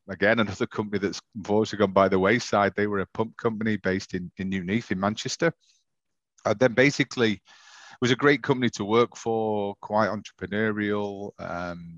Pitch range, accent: 95-110 Hz, British